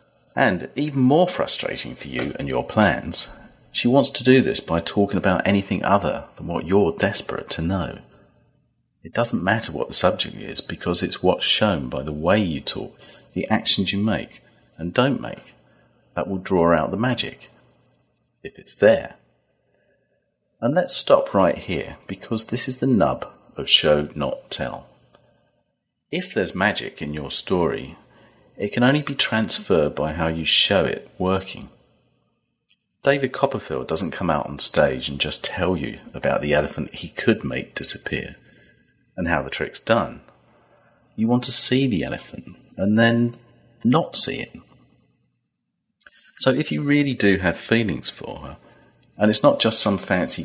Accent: British